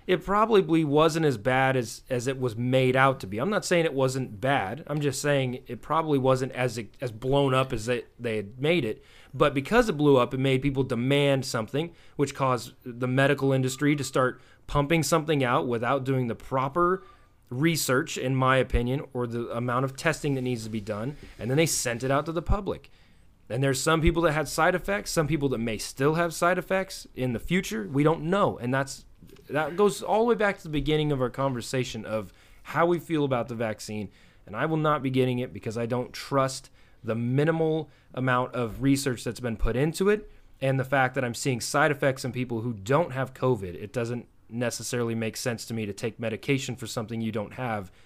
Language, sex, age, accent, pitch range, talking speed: English, male, 30-49, American, 120-155 Hz, 220 wpm